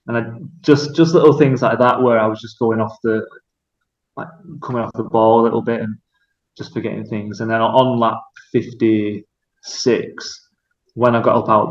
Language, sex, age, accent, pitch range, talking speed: English, male, 20-39, British, 110-125 Hz, 195 wpm